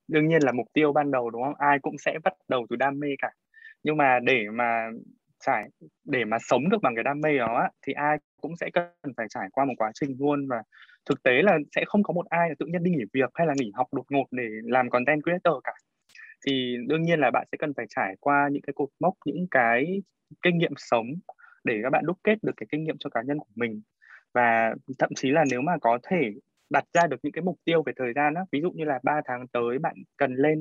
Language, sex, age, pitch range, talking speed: Vietnamese, male, 20-39, 125-170 Hz, 255 wpm